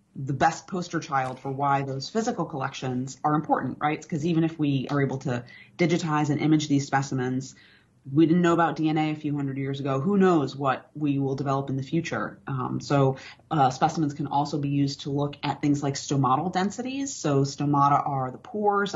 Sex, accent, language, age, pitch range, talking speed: female, American, English, 30-49, 135-155 Hz, 200 wpm